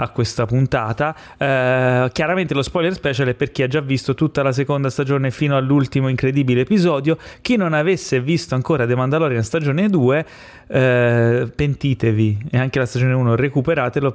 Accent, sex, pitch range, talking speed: native, male, 125-165 Hz, 165 wpm